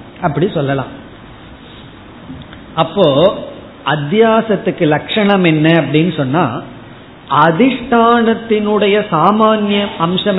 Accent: native